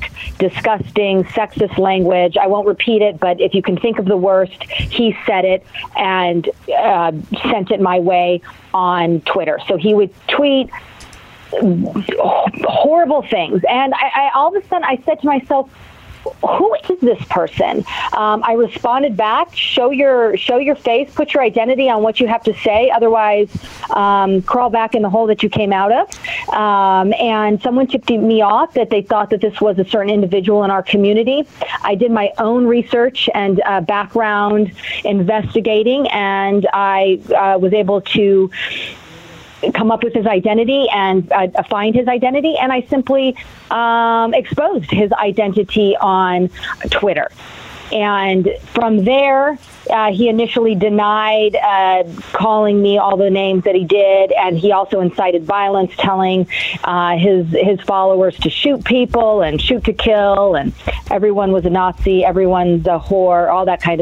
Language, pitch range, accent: English, 195-235 Hz, American